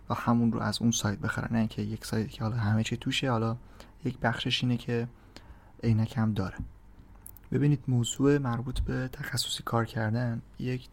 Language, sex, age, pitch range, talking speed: Persian, male, 30-49, 110-125 Hz, 170 wpm